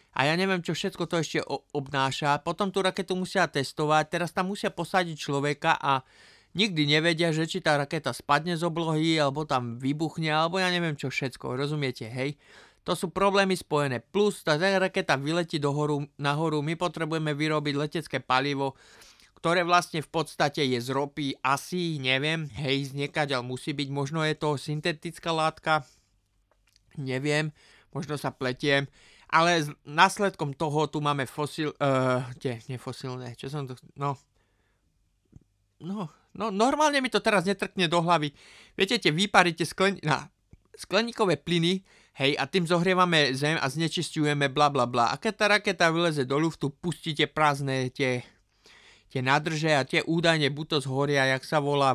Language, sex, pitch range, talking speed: Slovak, male, 135-170 Hz, 155 wpm